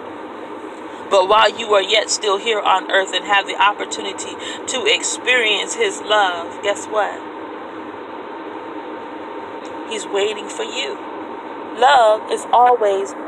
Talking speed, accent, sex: 115 wpm, American, female